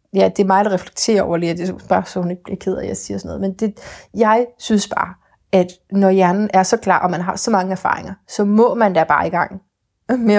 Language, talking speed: Danish, 255 wpm